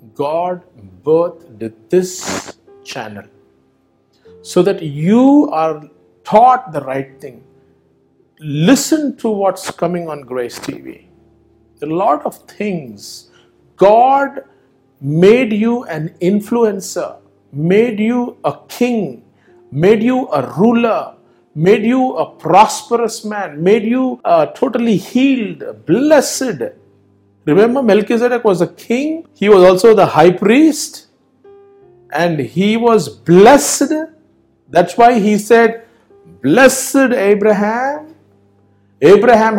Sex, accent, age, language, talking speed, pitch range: male, Indian, 50-69, English, 105 wpm, 155-255 Hz